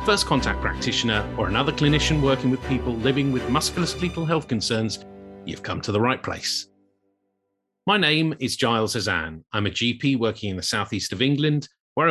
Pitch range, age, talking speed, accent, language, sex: 100-130 Hz, 40-59, 175 wpm, British, English, male